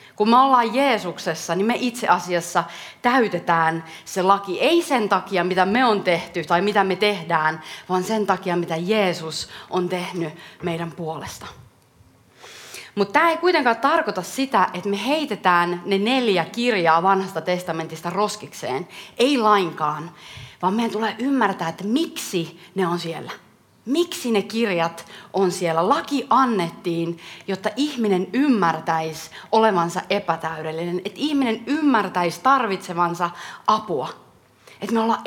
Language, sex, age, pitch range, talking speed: Finnish, female, 30-49, 175-250 Hz, 130 wpm